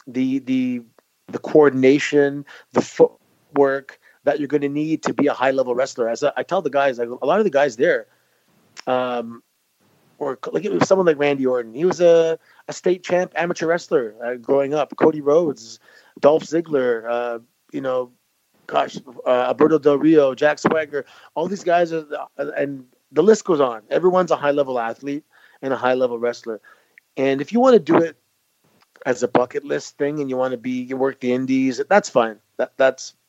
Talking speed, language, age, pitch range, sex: 185 wpm, English, 30-49, 125-160 Hz, male